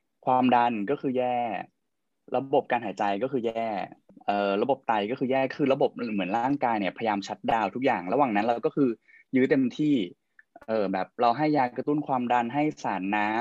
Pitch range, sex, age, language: 105-140 Hz, male, 20-39, Thai